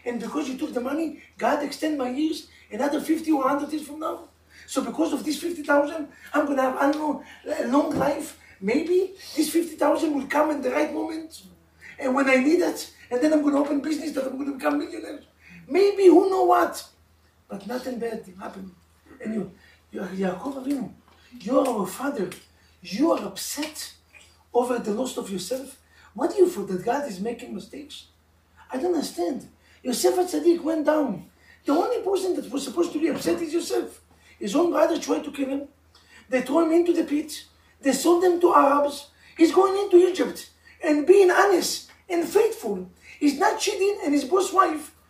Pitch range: 275-360 Hz